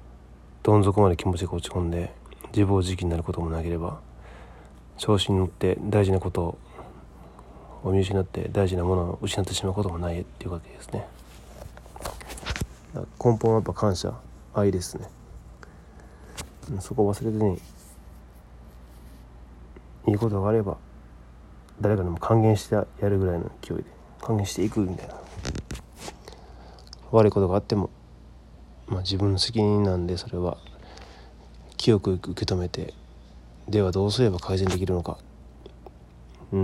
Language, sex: Japanese, male